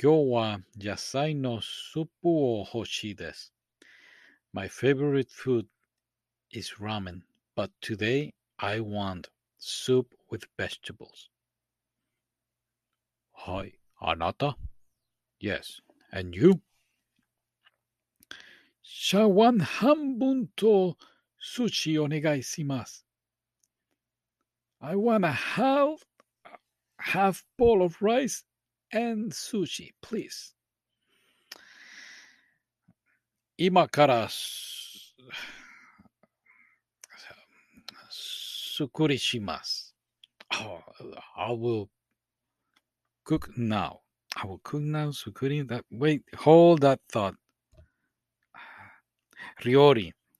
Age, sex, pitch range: 60-79, male, 110-170 Hz